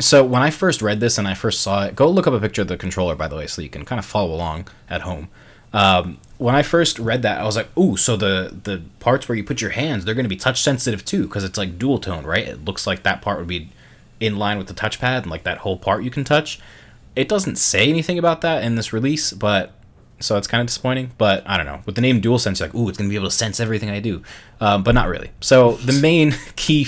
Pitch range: 95-120 Hz